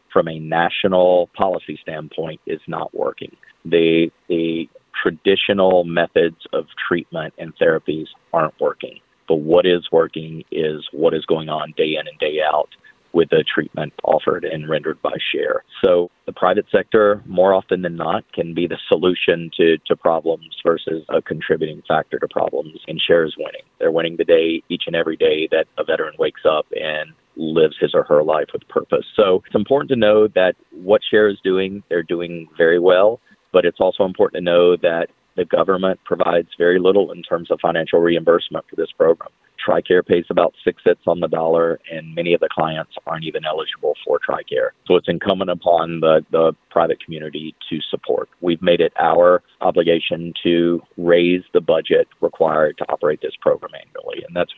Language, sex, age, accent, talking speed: English, male, 40-59, American, 180 wpm